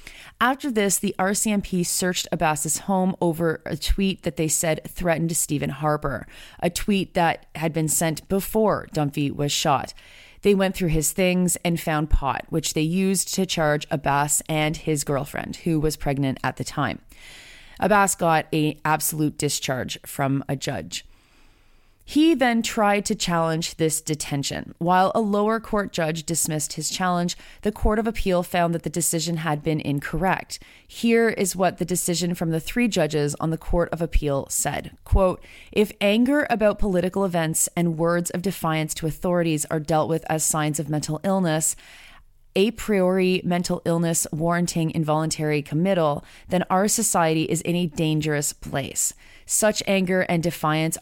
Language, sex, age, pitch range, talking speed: English, female, 30-49, 155-190 Hz, 160 wpm